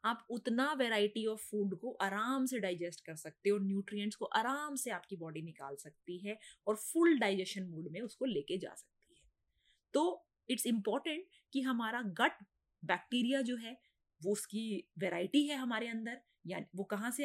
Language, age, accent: Hindi, 20-39, native